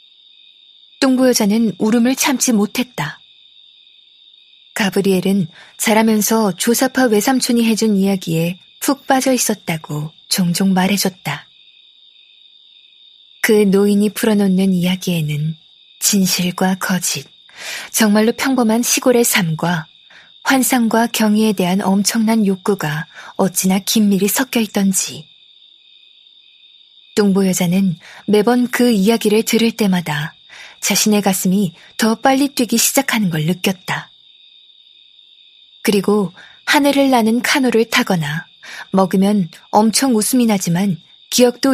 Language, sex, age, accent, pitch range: Korean, female, 20-39, native, 190-240 Hz